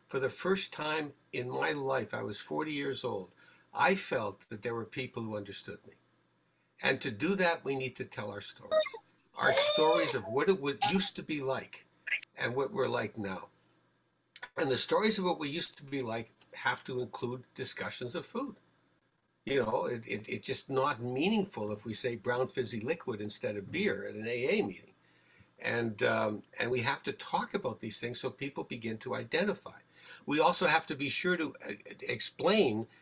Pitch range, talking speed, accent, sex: 110-155 Hz, 185 wpm, American, male